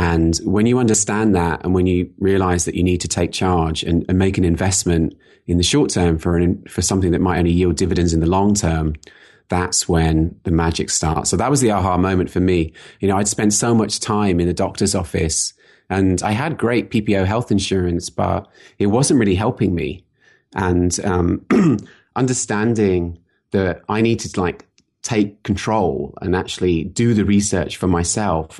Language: English